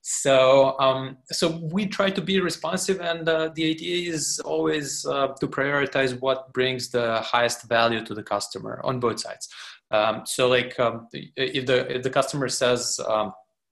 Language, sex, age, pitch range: English, male, 20-39, 110-130 Hz